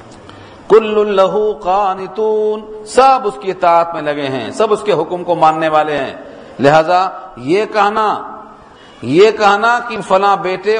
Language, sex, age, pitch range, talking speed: Urdu, male, 50-69, 155-220 Hz, 135 wpm